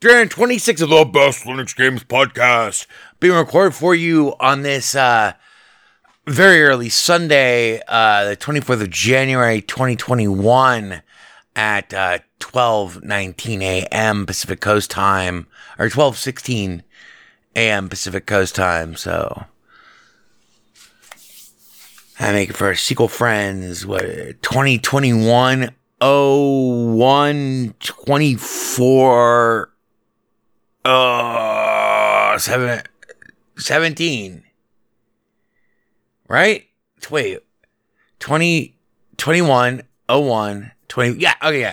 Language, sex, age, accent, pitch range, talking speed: English, male, 30-49, American, 110-155 Hz, 80 wpm